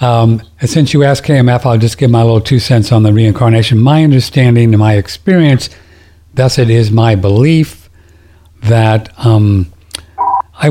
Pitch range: 100-130 Hz